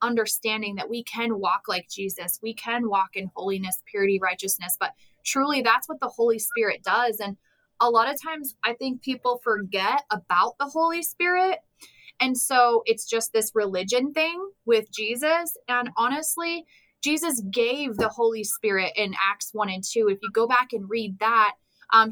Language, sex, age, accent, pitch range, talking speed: English, female, 20-39, American, 200-265 Hz, 175 wpm